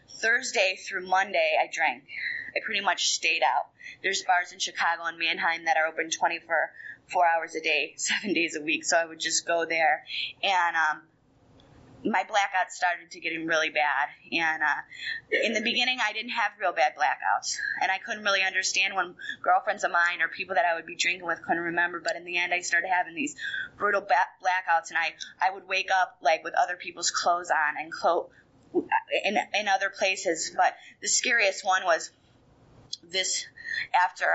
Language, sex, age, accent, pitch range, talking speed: English, female, 20-39, American, 165-190 Hz, 190 wpm